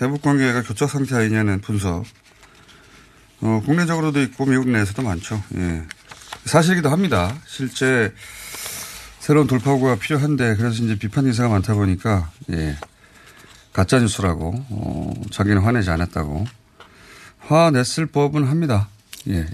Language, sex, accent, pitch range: Korean, male, native, 100-140 Hz